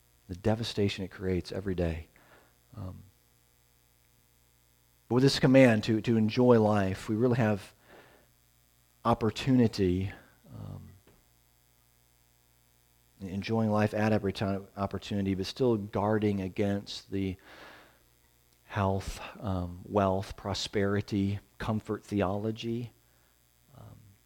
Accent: American